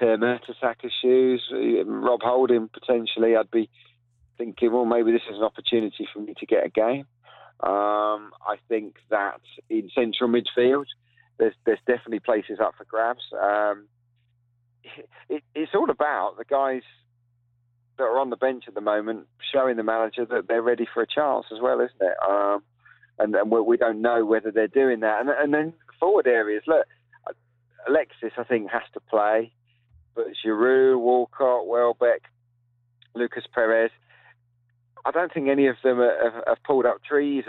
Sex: male